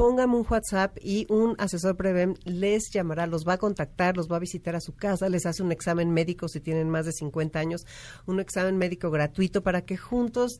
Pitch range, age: 155-195 Hz, 40-59